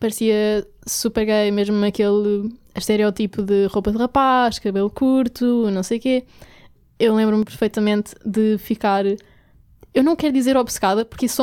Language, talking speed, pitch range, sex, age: Portuguese, 145 wpm, 210-245 Hz, female, 10-29